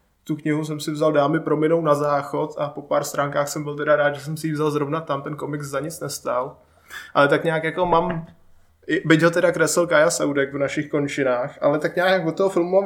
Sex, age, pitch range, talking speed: male, 20-39, 140-155 Hz, 240 wpm